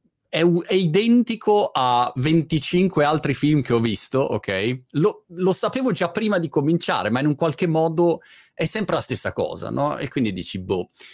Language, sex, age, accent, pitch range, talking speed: Italian, male, 30-49, native, 100-145 Hz, 170 wpm